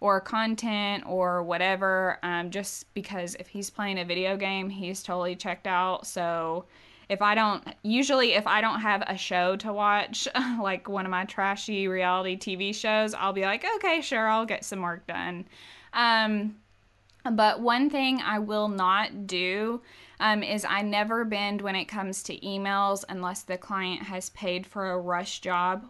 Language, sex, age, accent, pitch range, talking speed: English, female, 10-29, American, 185-215 Hz, 175 wpm